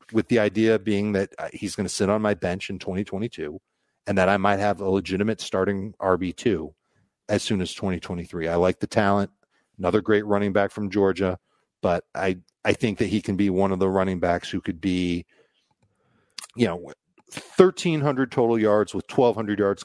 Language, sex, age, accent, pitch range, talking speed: English, male, 40-59, American, 90-105 Hz, 185 wpm